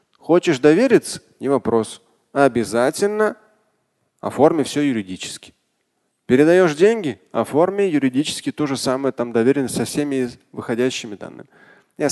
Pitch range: 120-155 Hz